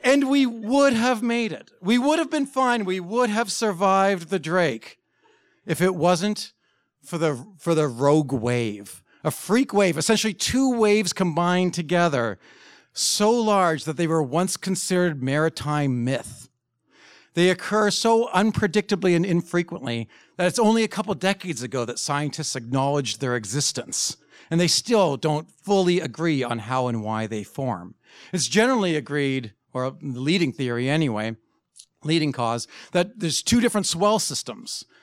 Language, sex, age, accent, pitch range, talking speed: English, male, 50-69, American, 135-195 Hz, 150 wpm